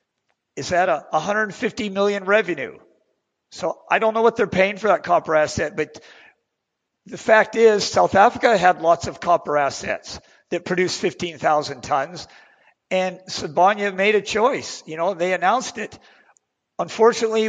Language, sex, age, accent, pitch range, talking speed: English, male, 50-69, American, 170-215 Hz, 150 wpm